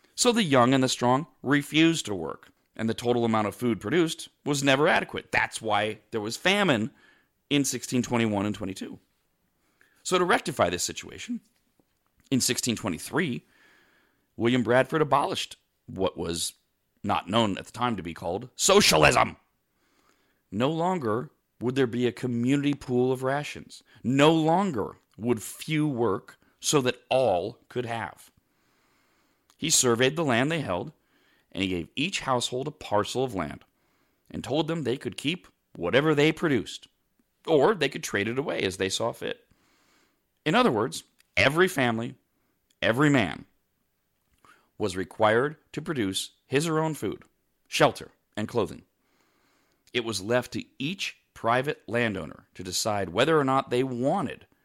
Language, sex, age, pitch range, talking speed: English, male, 40-59, 105-145 Hz, 150 wpm